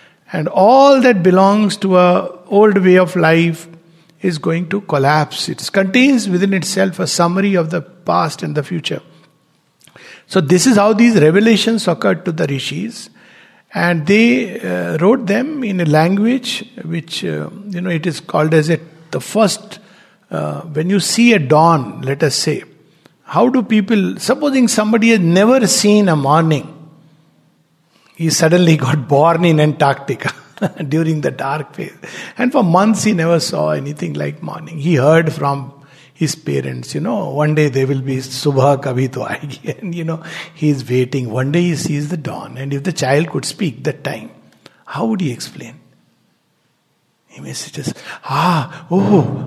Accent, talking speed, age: Indian, 165 wpm, 60-79